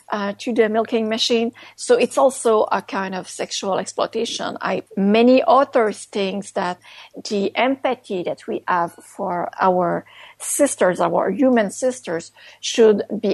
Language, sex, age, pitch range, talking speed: English, female, 50-69, 195-245 Hz, 135 wpm